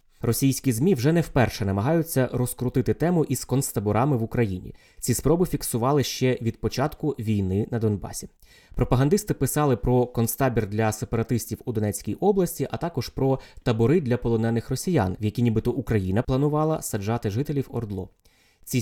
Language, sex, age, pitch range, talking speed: Ukrainian, male, 20-39, 105-135 Hz, 145 wpm